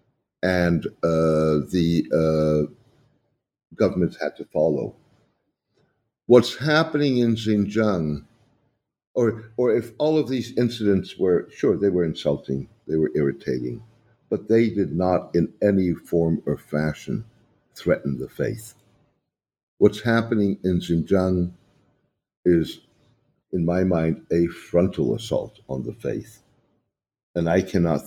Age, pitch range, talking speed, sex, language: 60-79, 80-115 Hz, 120 wpm, male, English